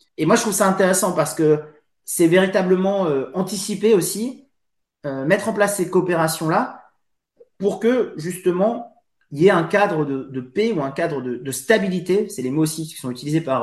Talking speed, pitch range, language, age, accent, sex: 195 wpm, 150-190 Hz, French, 30-49, French, male